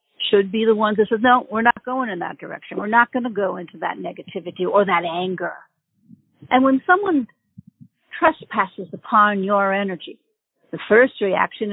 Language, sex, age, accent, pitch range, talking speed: English, female, 60-79, American, 205-265 Hz, 175 wpm